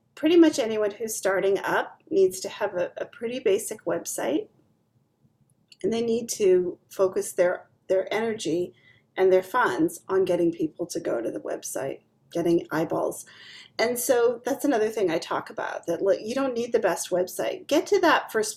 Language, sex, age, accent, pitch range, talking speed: English, female, 40-59, American, 180-285 Hz, 175 wpm